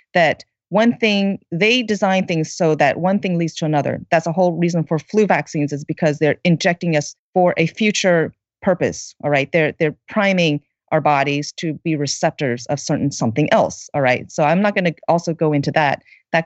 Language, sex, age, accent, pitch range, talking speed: English, female, 30-49, American, 165-225 Hz, 200 wpm